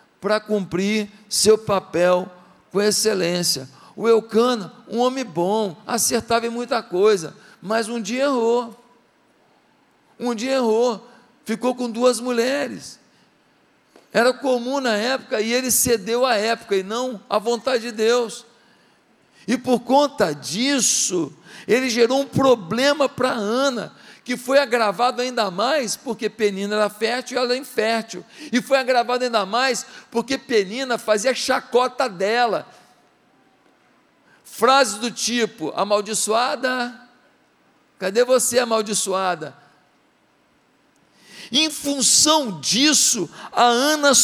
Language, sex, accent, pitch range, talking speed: Portuguese, male, Brazilian, 210-255 Hz, 120 wpm